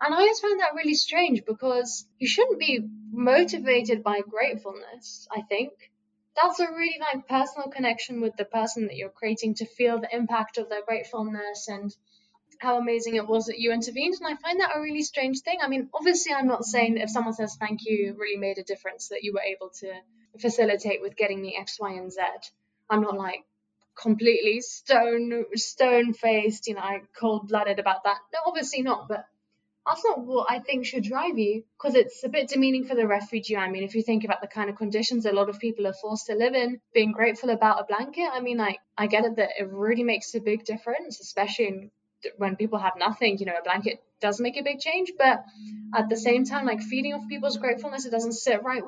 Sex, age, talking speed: female, 10-29, 225 wpm